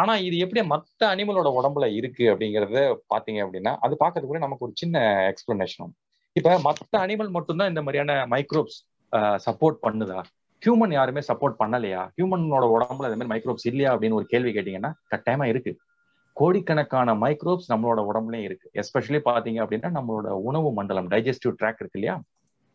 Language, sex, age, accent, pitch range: Tamil, male, 30-49, native, 115-170 Hz